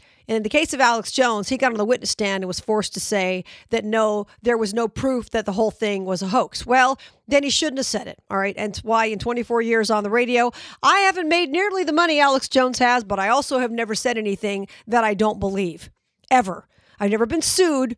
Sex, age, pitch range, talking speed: female, 50-69, 210-260 Hz, 245 wpm